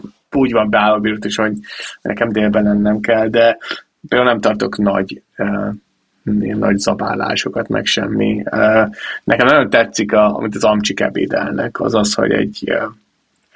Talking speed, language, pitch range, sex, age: 145 wpm, Hungarian, 100-115 Hz, male, 20-39